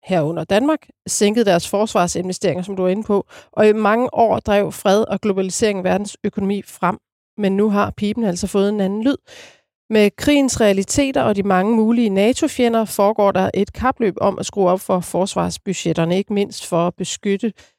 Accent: native